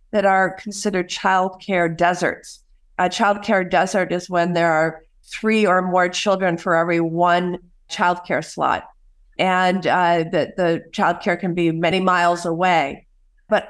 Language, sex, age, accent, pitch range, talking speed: English, female, 50-69, American, 175-215 Hz, 145 wpm